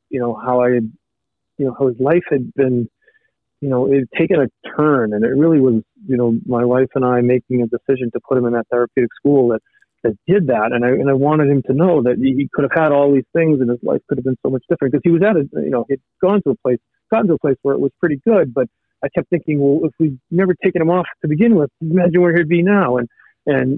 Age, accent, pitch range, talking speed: 40-59, American, 125-150 Hz, 275 wpm